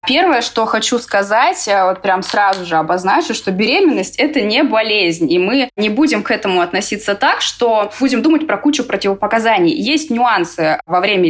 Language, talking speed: Russian, 170 wpm